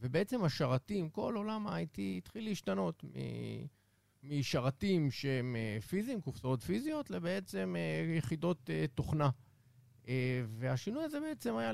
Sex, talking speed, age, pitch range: male, 95 wpm, 50-69, 120-170 Hz